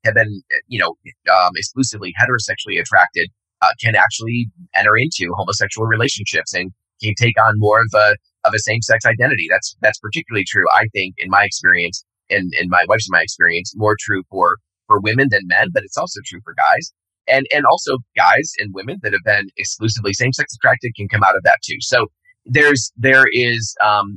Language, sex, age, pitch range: English, male, 30-49, 95-120 Hz